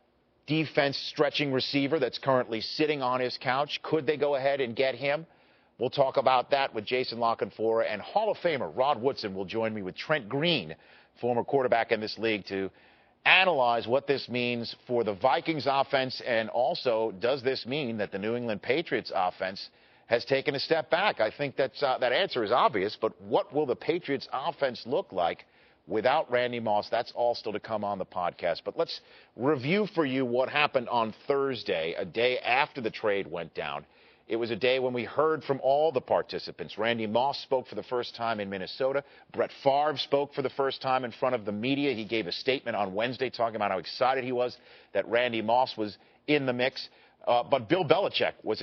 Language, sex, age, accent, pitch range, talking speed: English, male, 50-69, American, 115-140 Hz, 200 wpm